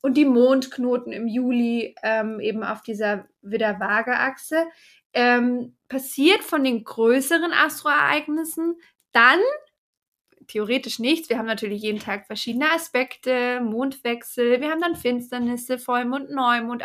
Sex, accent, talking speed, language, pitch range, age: female, German, 120 wpm, German, 225-270 Hz, 20-39